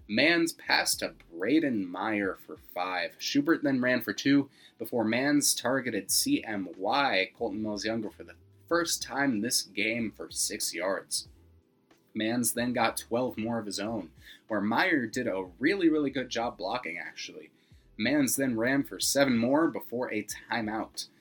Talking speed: 155 wpm